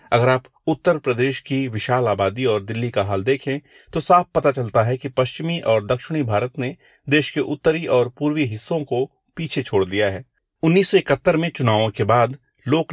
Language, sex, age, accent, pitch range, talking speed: Hindi, male, 30-49, native, 105-135 Hz, 185 wpm